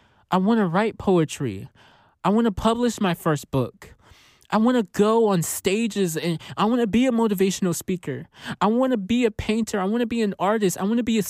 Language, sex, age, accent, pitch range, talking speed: English, male, 20-39, American, 155-225 Hz, 230 wpm